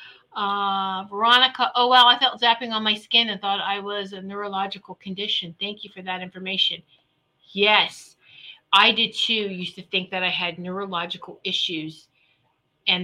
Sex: female